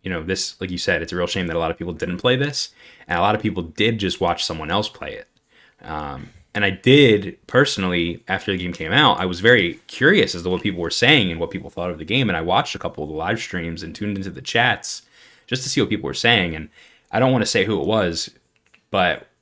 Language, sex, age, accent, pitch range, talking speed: English, male, 20-39, American, 90-115 Hz, 270 wpm